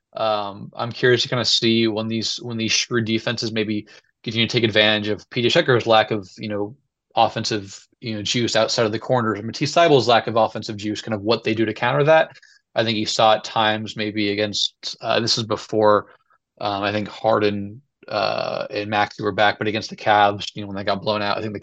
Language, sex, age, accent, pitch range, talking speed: English, male, 20-39, American, 105-120 Hz, 230 wpm